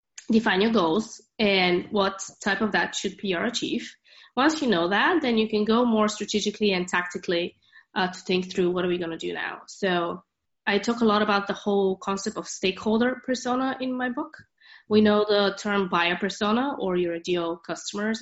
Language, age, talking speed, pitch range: French, 20-39, 195 wpm, 180-220 Hz